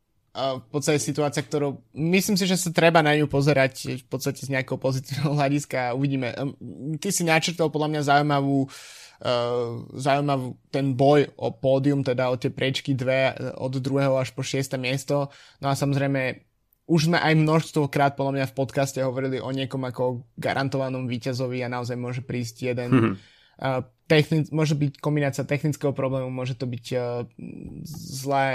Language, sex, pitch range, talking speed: Slovak, male, 130-145 Hz, 165 wpm